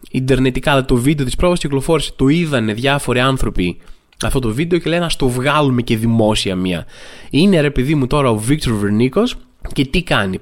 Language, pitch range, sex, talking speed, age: Greek, 125-180 Hz, male, 185 wpm, 20-39